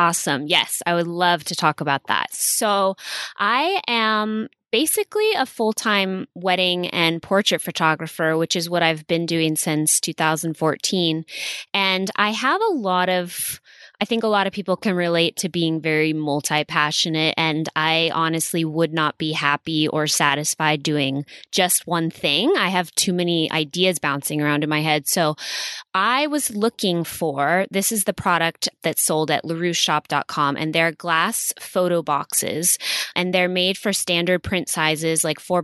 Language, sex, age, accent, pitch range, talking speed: English, female, 20-39, American, 155-190 Hz, 160 wpm